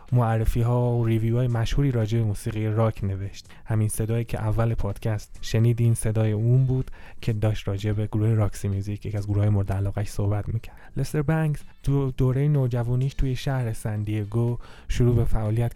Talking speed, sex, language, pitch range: 180 wpm, male, Persian, 110-130 Hz